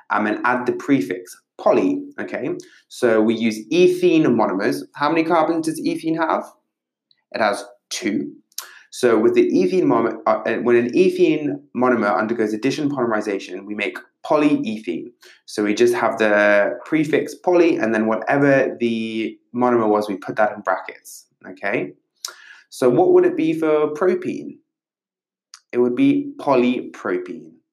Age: 20-39